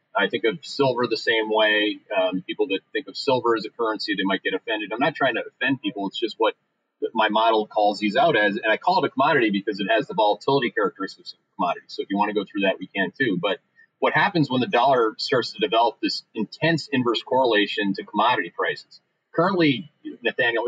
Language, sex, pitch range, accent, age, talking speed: English, male, 105-145 Hz, American, 30-49, 225 wpm